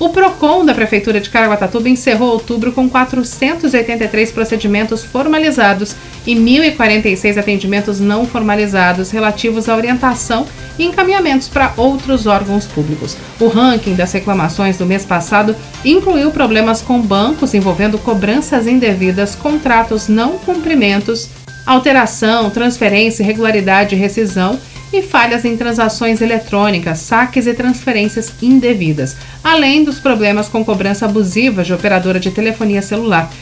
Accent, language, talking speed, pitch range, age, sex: Brazilian, Portuguese, 120 wpm, 205-255 Hz, 40-59, female